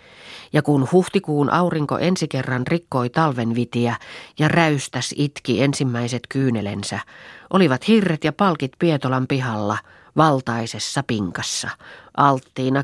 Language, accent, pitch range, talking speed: Finnish, native, 120-165 Hz, 105 wpm